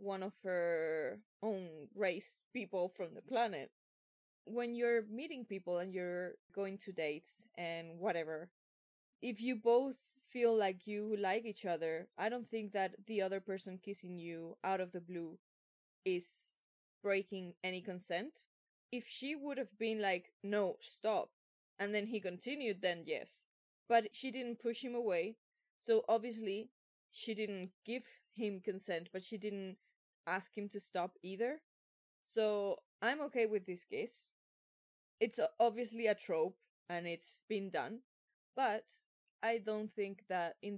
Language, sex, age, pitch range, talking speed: English, female, 20-39, 180-225 Hz, 150 wpm